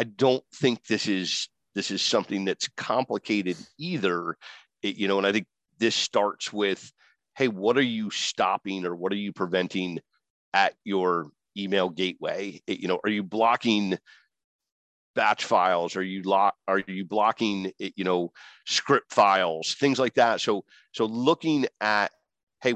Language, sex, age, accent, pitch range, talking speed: English, male, 40-59, American, 95-110 Hz, 160 wpm